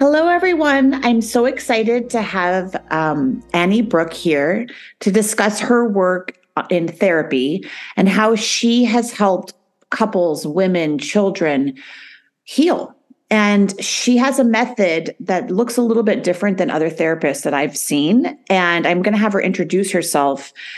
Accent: American